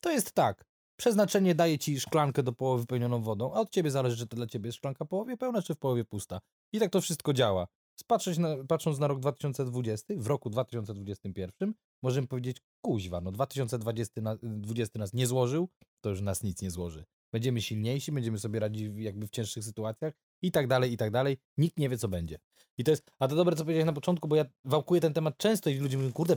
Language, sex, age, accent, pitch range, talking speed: Polish, male, 20-39, native, 115-150 Hz, 225 wpm